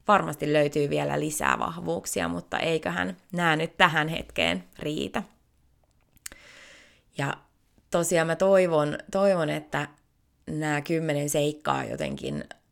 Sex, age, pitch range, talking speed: female, 20-39, 145-190 Hz, 105 wpm